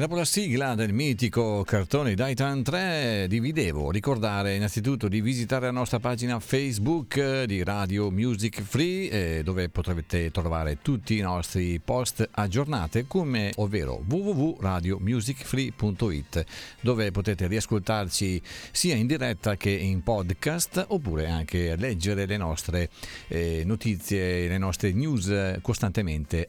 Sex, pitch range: male, 95-130 Hz